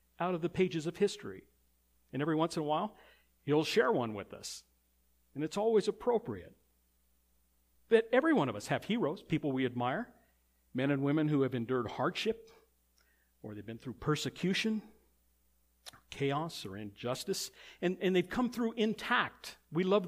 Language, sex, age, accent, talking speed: English, male, 50-69, American, 160 wpm